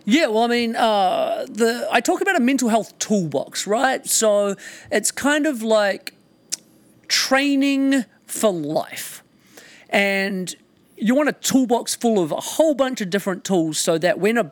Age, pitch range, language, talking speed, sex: 40-59, 165-230 Hz, English, 160 wpm, male